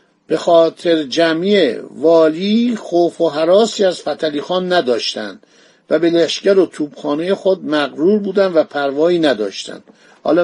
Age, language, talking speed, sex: 50-69, Persian, 125 wpm, male